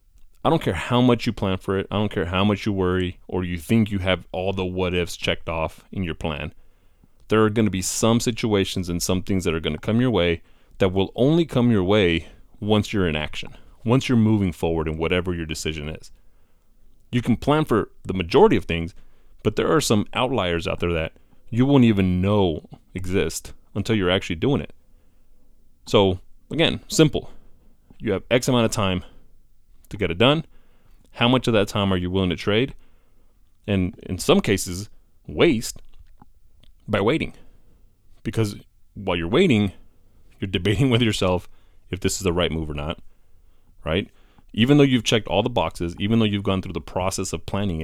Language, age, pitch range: English, 30-49, 85-110 Hz